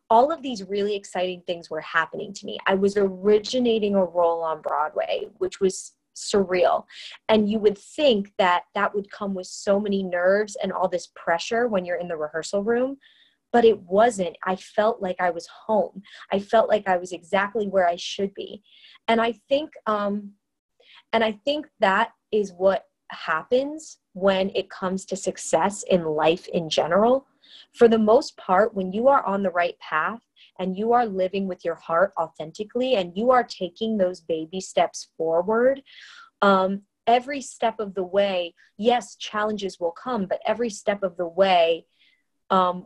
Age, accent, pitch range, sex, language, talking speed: 20-39, American, 185-235 Hz, female, English, 170 wpm